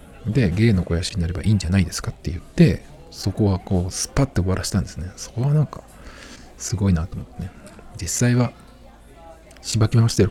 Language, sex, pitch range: Japanese, male, 90-115 Hz